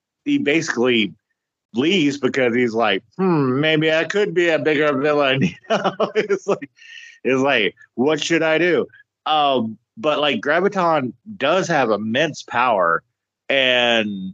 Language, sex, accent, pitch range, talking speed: English, male, American, 115-165 Hz, 140 wpm